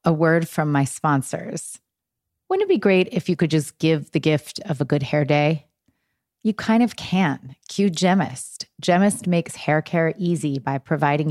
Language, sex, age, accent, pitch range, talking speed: English, female, 30-49, American, 150-185 Hz, 180 wpm